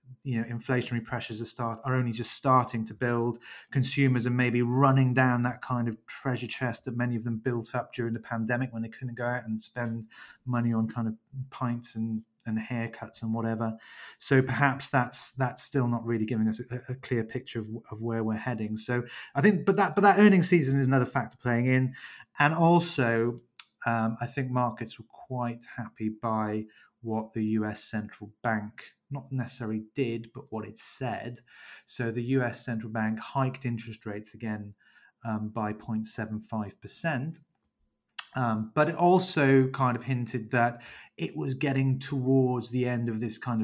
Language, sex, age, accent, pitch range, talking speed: English, male, 30-49, British, 110-130 Hz, 180 wpm